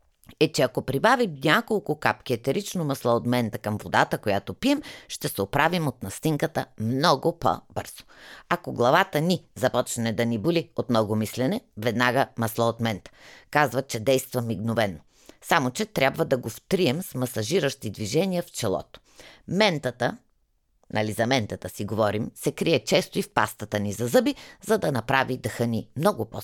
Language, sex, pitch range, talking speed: Bulgarian, female, 115-170 Hz, 165 wpm